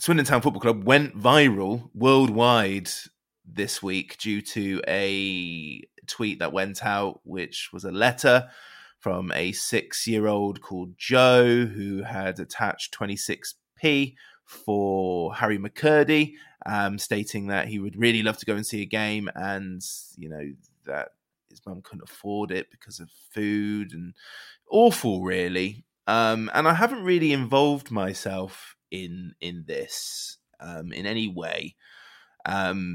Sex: male